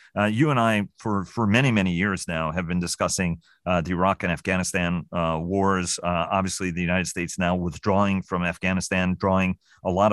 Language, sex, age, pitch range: English, male, 40-59, 90-100 Hz